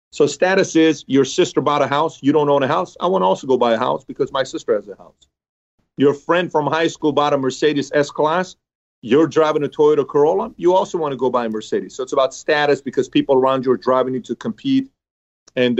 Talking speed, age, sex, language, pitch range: 240 wpm, 40-59, male, English, 125-155 Hz